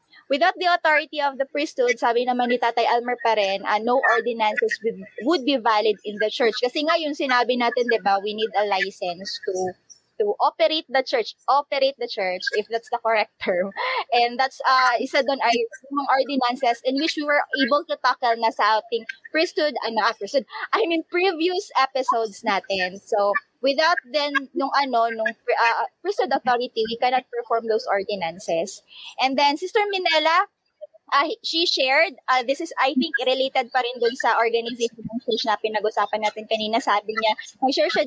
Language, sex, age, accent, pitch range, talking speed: Filipino, female, 20-39, native, 220-290 Hz, 185 wpm